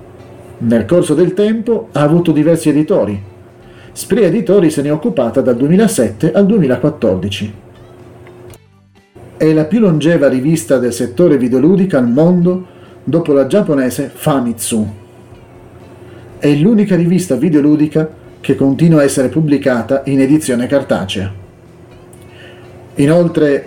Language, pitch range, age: Italian, 115-150 Hz, 40-59